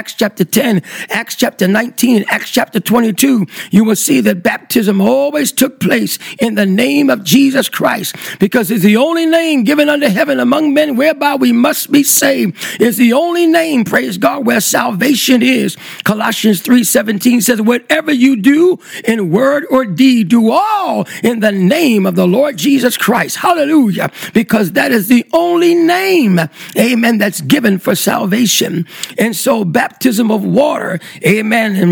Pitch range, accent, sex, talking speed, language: 215-275 Hz, American, male, 165 wpm, English